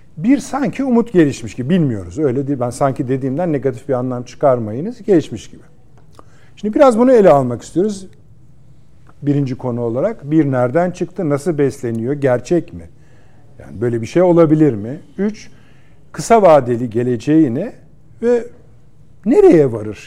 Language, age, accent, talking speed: Turkish, 50-69, native, 140 wpm